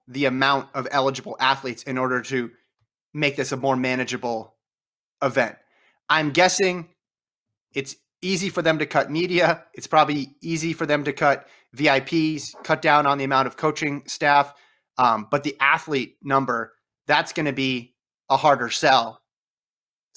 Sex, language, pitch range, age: male, English, 130-155 Hz, 30-49